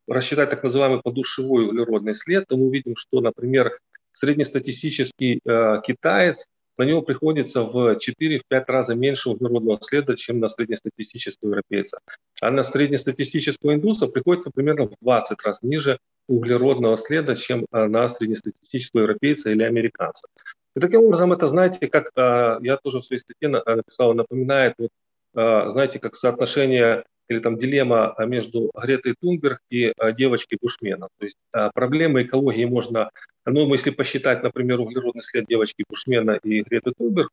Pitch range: 115-140 Hz